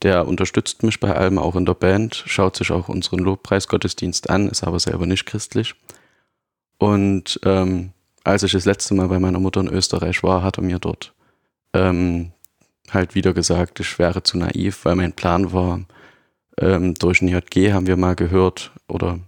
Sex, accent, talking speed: male, German, 180 wpm